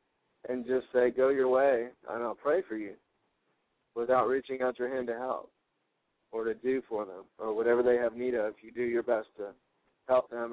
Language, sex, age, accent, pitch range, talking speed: English, male, 50-69, American, 115-130 Hz, 210 wpm